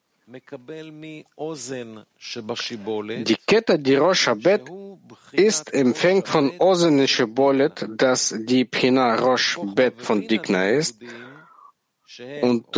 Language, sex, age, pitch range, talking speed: German, male, 50-69, 115-155 Hz, 90 wpm